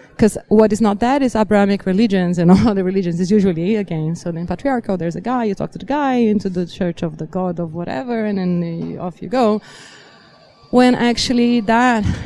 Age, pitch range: 20-39, 185-225 Hz